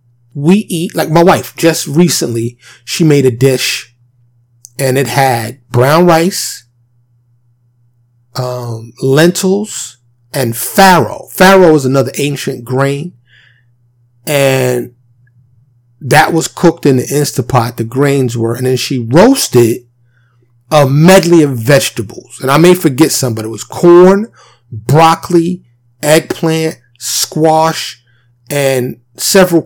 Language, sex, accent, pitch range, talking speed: English, male, American, 120-160 Hz, 115 wpm